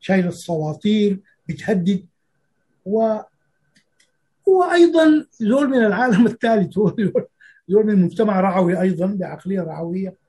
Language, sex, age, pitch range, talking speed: Arabic, male, 60-79, 175-230 Hz, 95 wpm